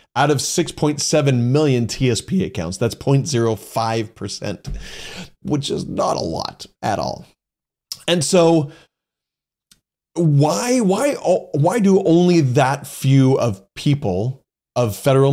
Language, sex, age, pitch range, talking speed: English, male, 30-49, 115-150 Hz, 115 wpm